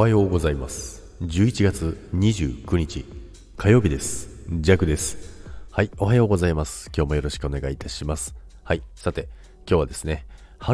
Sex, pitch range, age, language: male, 70-90 Hz, 40-59, Japanese